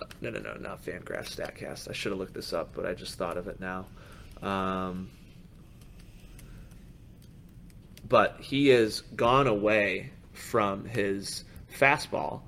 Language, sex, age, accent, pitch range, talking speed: English, male, 30-49, American, 100-130 Hz, 135 wpm